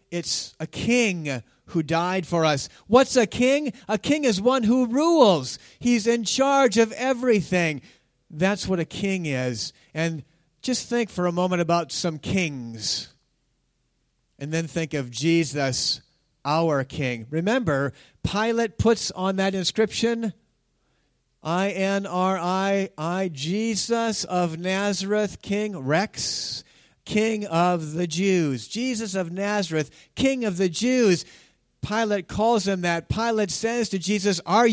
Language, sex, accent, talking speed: English, male, American, 135 wpm